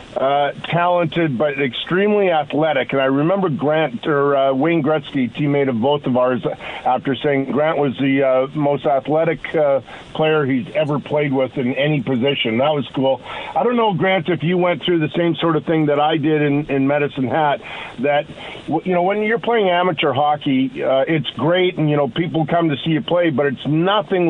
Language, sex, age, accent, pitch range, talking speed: English, male, 50-69, American, 140-165 Hz, 200 wpm